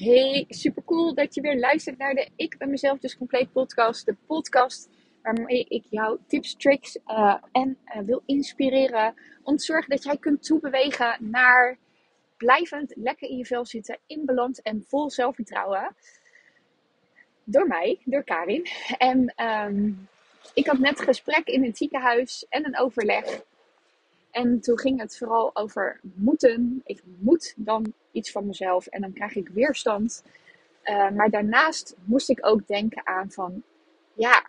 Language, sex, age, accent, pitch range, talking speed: Dutch, female, 20-39, Dutch, 220-275 Hz, 160 wpm